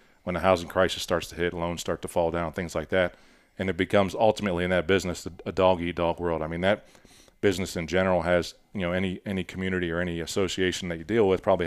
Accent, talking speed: American, 230 wpm